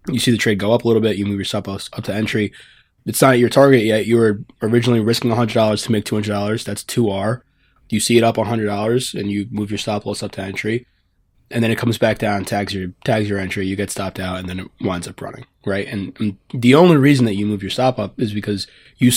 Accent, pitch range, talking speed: American, 100-120 Hz, 260 wpm